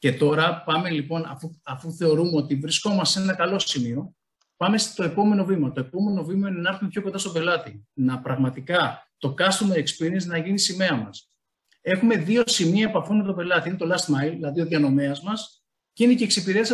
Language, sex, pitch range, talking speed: Greek, male, 145-215 Hz, 200 wpm